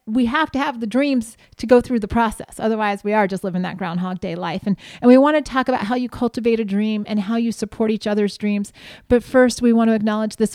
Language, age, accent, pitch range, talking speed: English, 30-49, American, 210-255 Hz, 260 wpm